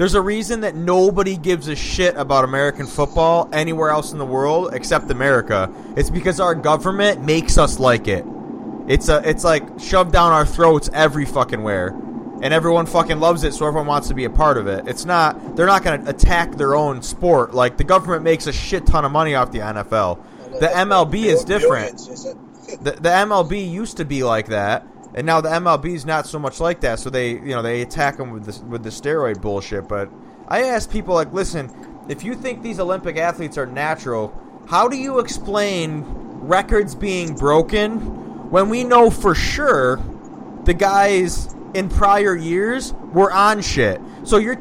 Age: 20-39